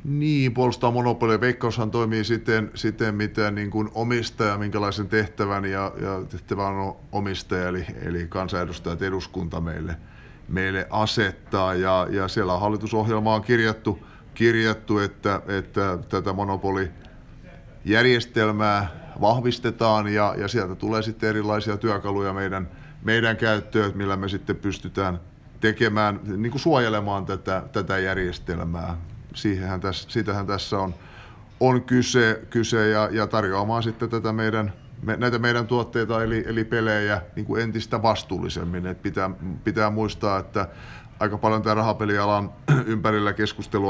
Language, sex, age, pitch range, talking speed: Finnish, male, 30-49, 95-110 Hz, 120 wpm